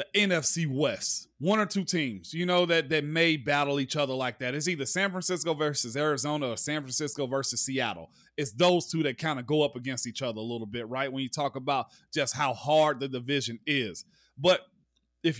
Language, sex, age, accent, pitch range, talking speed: English, male, 30-49, American, 150-200 Hz, 215 wpm